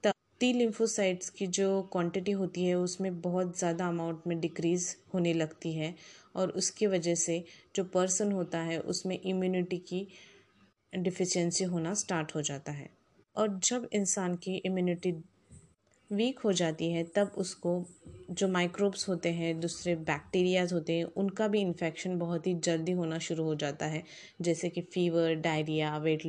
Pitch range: 165-190 Hz